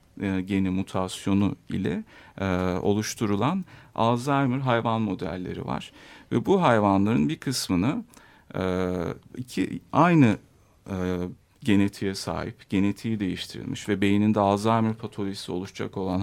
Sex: male